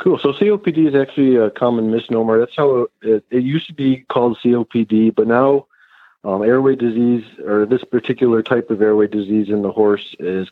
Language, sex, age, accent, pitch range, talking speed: English, male, 40-59, American, 95-115 Hz, 190 wpm